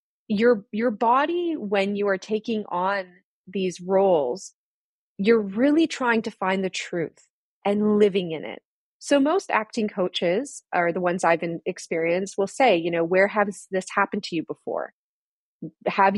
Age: 30-49